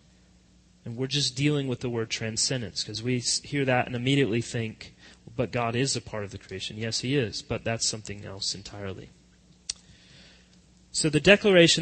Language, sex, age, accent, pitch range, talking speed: English, male, 30-49, American, 120-165 Hz, 175 wpm